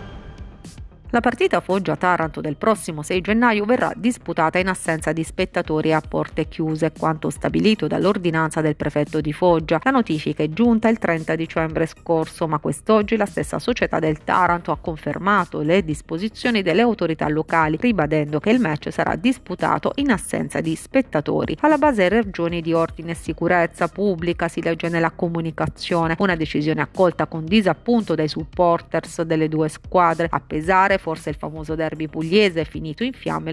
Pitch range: 160-195 Hz